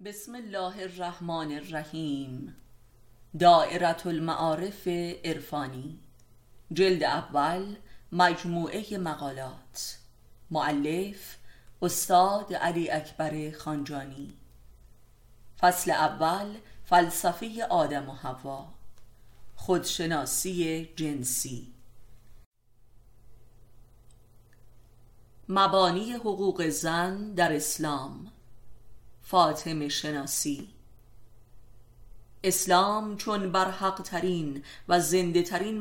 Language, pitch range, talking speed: Persian, 135-180 Hz, 60 wpm